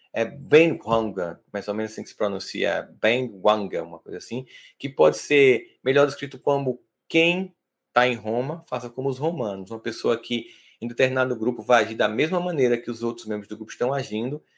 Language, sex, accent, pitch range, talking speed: Portuguese, male, Brazilian, 120-165 Hz, 200 wpm